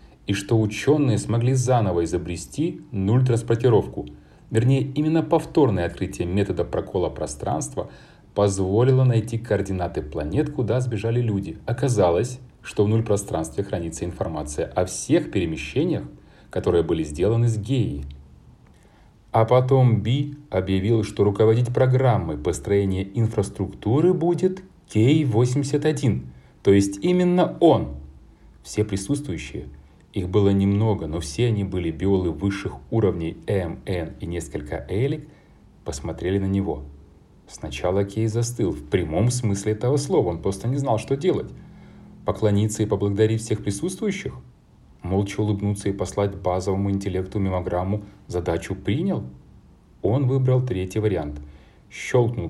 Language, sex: Russian, male